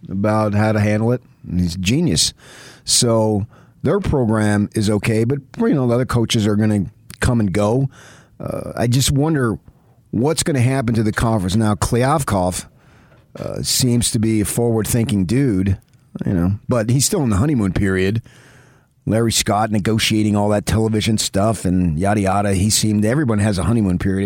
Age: 40-59